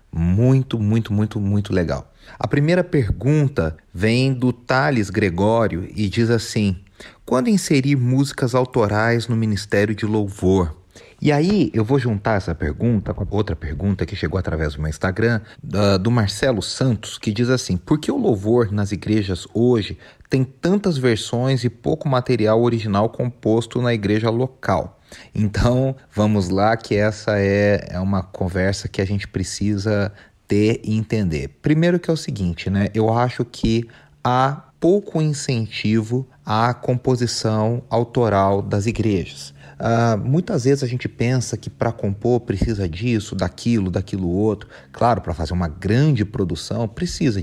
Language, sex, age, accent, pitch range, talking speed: Portuguese, male, 30-49, Brazilian, 95-120 Hz, 150 wpm